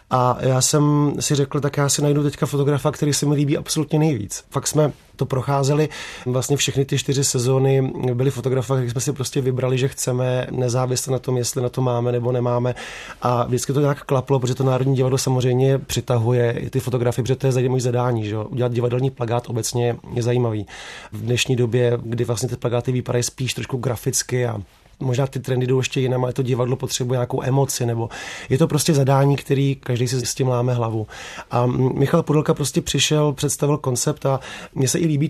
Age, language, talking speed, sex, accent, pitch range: 30-49, Czech, 200 wpm, male, native, 120-135 Hz